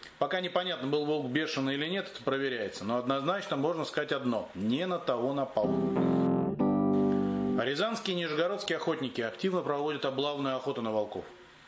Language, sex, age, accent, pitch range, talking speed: Russian, male, 30-49, native, 125-160 Hz, 150 wpm